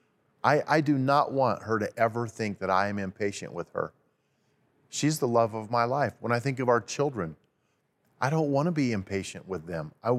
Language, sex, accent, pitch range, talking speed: English, male, American, 110-140 Hz, 205 wpm